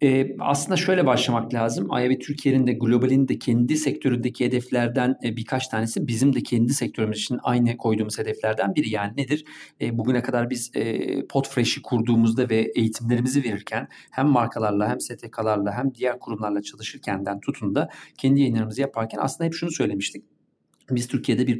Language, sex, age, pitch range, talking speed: Turkish, male, 40-59, 110-135 Hz, 155 wpm